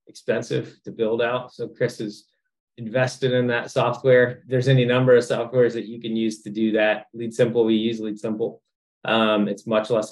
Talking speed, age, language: 195 wpm, 20-39, English